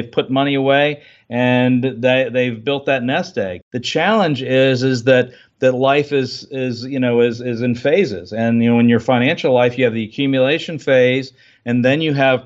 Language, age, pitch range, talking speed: English, 50-69, 120-135 Hz, 200 wpm